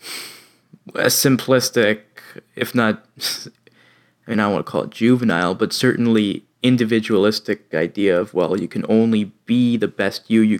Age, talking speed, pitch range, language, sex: 20-39, 155 wpm, 105-130 Hz, English, male